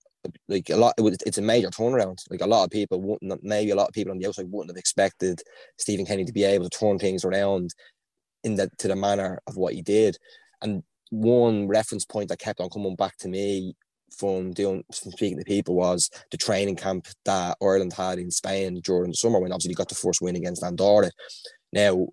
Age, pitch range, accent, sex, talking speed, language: 20-39, 90-105 Hz, Irish, male, 220 wpm, English